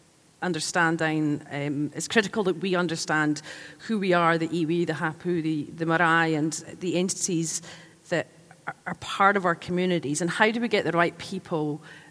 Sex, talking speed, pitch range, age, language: female, 170 wpm, 160-180 Hz, 40-59, English